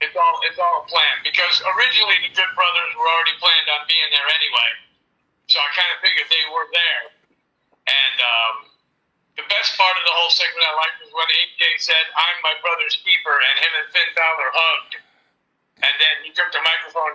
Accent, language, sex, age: American, English, male, 50-69